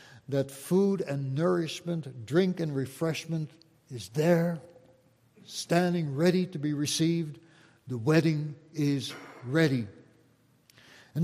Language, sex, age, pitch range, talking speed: English, male, 60-79, 150-185 Hz, 100 wpm